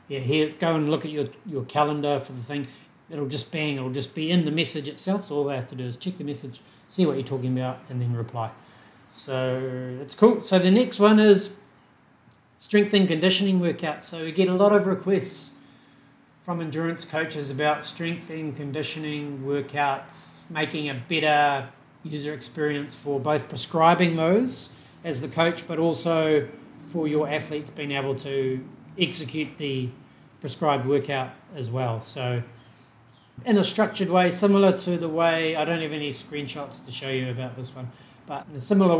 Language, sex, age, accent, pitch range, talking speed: English, male, 30-49, Australian, 130-165 Hz, 180 wpm